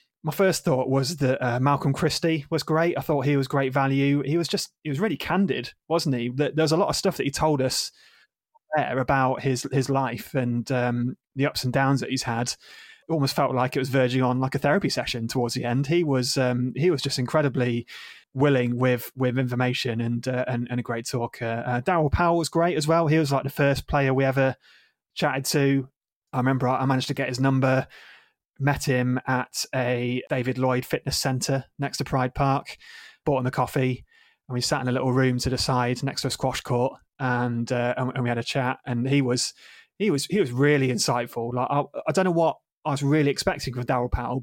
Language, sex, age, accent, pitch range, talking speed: English, male, 20-39, British, 125-145 Hz, 225 wpm